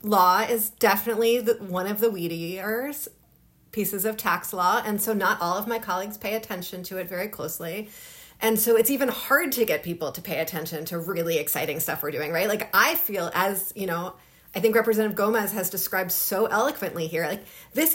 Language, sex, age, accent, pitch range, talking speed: English, female, 30-49, American, 185-240 Hz, 195 wpm